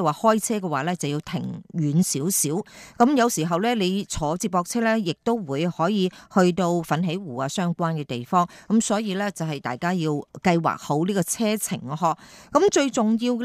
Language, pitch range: Japanese, 165-225 Hz